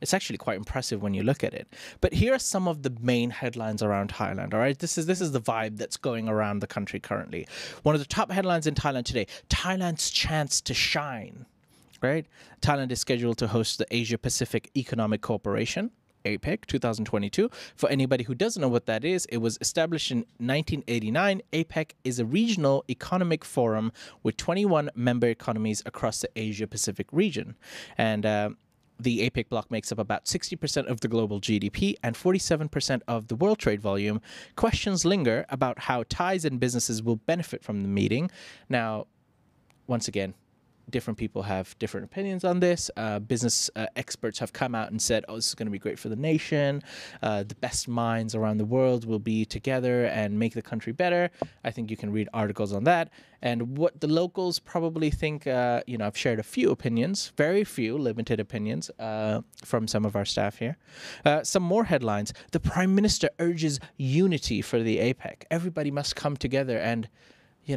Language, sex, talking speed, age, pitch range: English, male, 190 wpm, 20-39, 110-155 Hz